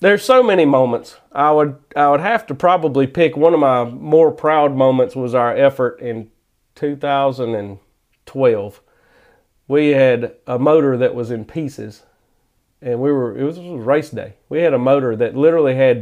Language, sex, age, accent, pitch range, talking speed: English, male, 40-59, American, 125-155 Hz, 175 wpm